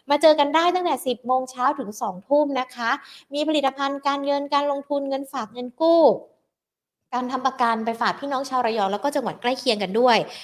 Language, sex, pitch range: Thai, female, 205-265 Hz